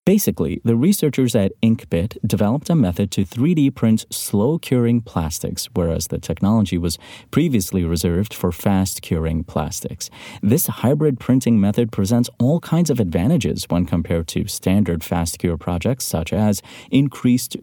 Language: English